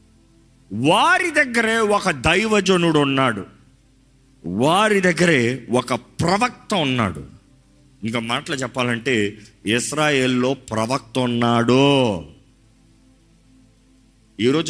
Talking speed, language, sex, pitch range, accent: 70 wpm, Telugu, male, 120-180 Hz, native